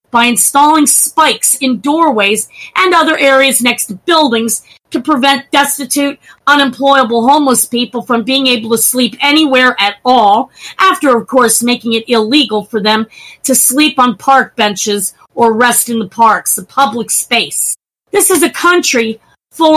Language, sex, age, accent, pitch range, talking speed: English, female, 40-59, American, 235-310 Hz, 155 wpm